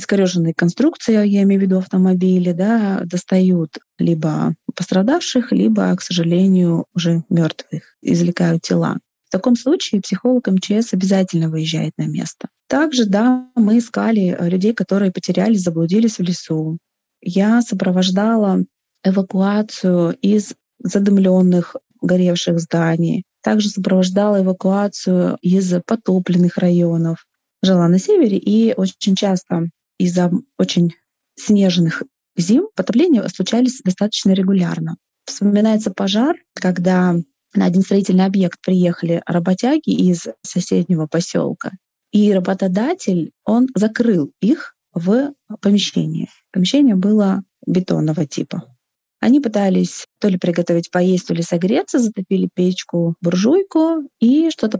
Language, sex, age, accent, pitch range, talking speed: Russian, female, 20-39, native, 180-220 Hz, 110 wpm